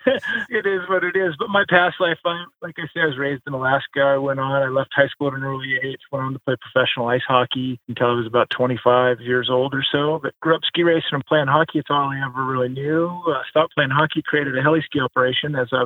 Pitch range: 130-155 Hz